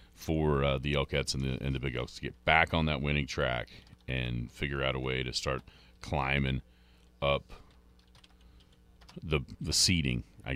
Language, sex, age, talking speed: English, male, 40-59, 170 wpm